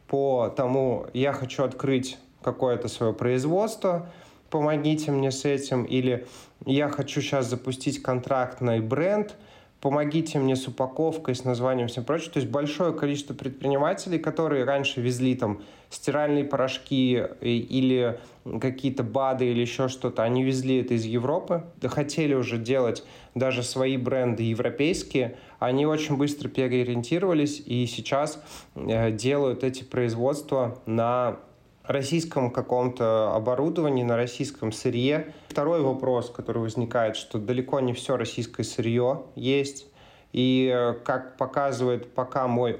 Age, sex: 20-39, male